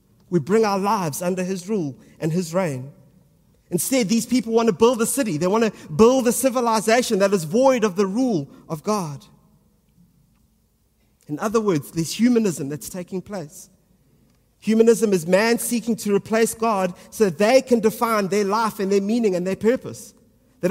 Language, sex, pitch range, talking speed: English, male, 175-225 Hz, 175 wpm